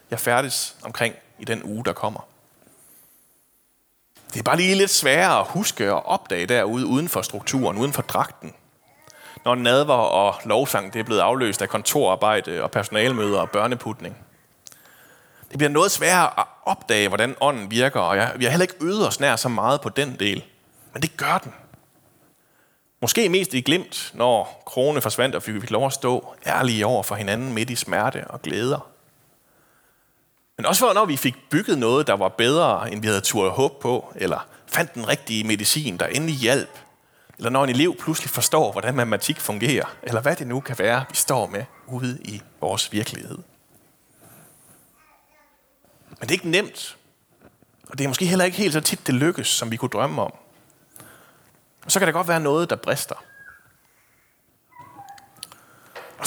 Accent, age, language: native, 30-49, Danish